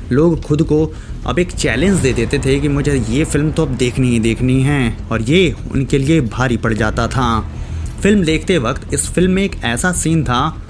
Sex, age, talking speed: male, 30-49, 210 wpm